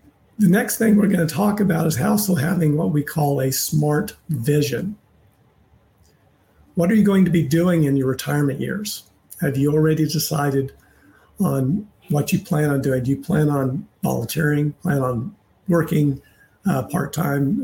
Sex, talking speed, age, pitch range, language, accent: male, 160 wpm, 50-69, 130-160 Hz, English, American